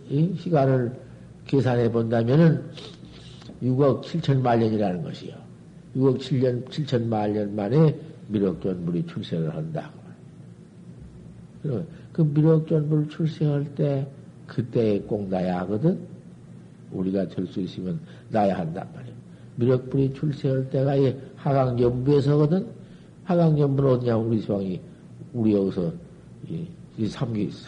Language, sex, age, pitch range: Korean, male, 50-69, 105-145 Hz